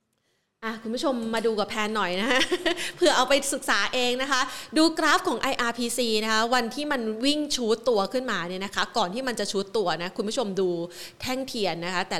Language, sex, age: Thai, female, 20-39